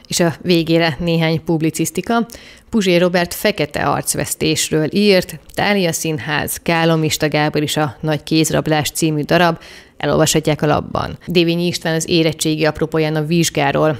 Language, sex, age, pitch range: Hungarian, female, 30-49, 155-165 Hz